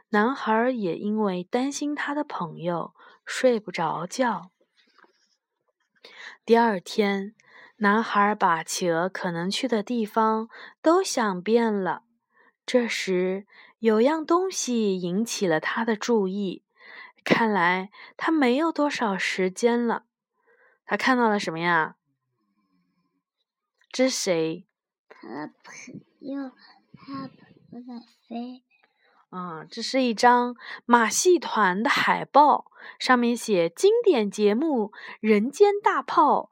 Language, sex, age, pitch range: Chinese, female, 20-39, 205-275 Hz